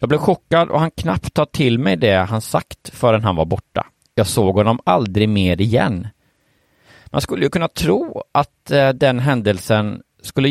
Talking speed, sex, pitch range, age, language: 175 wpm, male, 100-135 Hz, 30-49, English